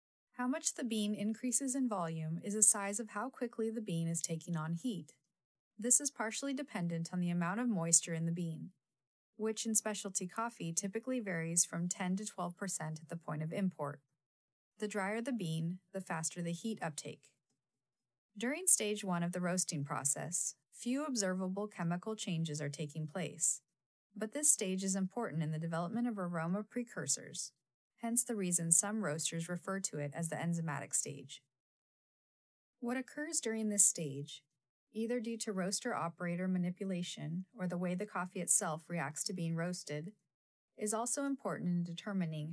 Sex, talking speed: female, 165 wpm